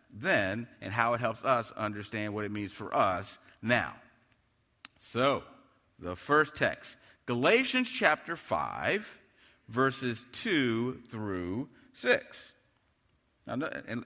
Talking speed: 105 wpm